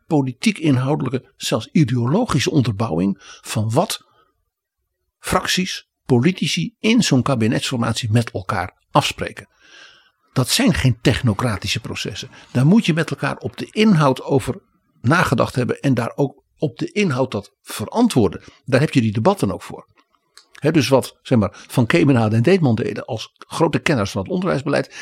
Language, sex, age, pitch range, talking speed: Dutch, male, 60-79, 120-165 Hz, 150 wpm